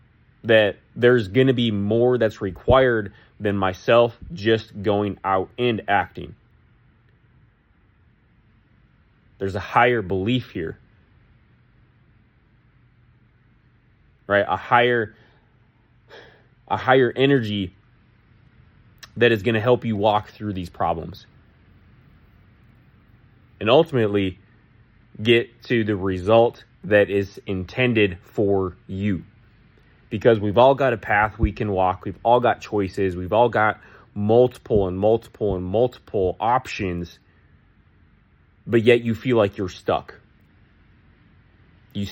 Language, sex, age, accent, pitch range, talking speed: English, male, 20-39, American, 95-120 Hz, 110 wpm